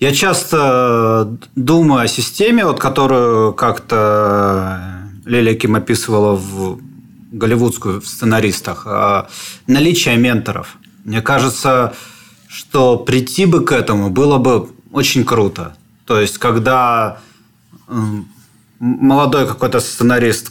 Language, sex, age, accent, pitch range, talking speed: Russian, male, 30-49, native, 105-130 Hz, 100 wpm